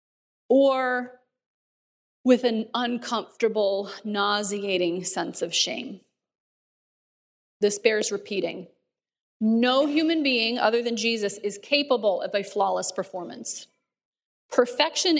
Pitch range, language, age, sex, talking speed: 210-270 Hz, English, 30-49, female, 95 wpm